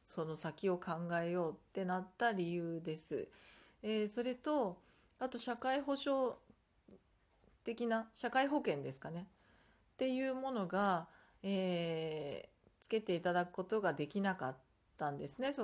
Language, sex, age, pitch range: Japanese, female, 40-59, 175-245 Hz